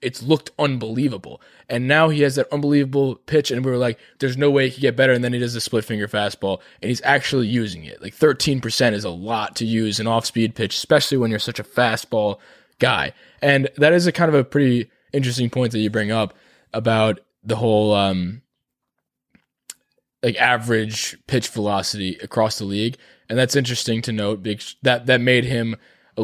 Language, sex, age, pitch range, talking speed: English, male, 20-39, 110-140 Hz, 200 wpm